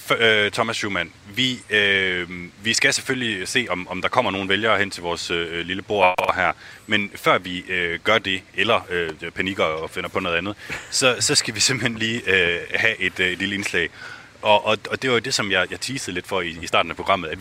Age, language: 30-49, Danish